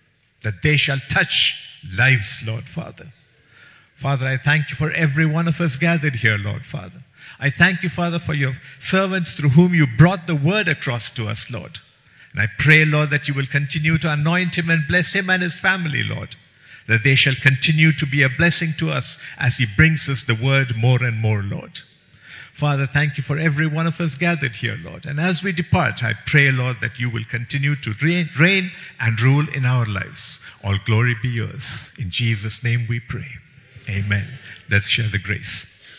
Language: English